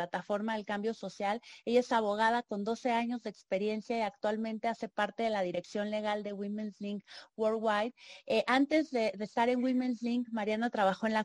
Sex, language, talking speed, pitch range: female, Spanish, 190 wpm, 195-225 Hz